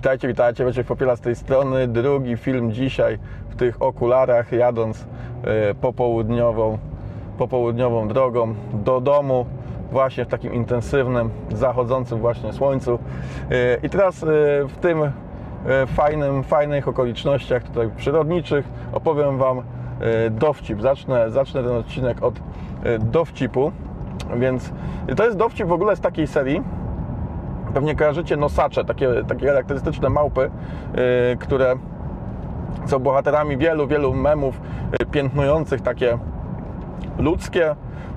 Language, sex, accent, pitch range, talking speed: Polish, male, native, 120-140 Hz, 120 wpm